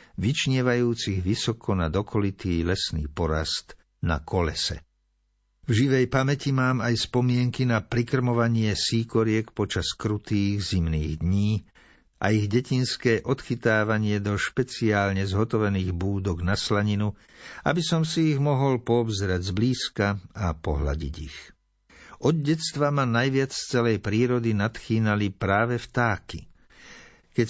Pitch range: 95-120 Hz